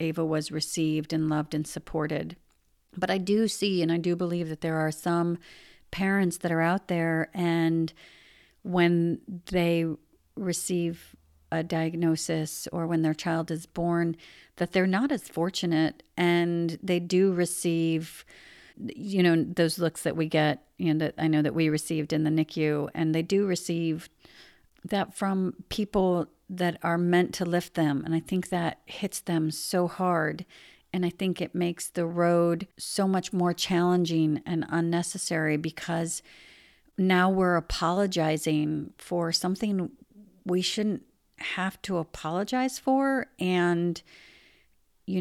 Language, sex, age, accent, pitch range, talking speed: English, female, 50-69, American, 160-185 Hz, 145 wpm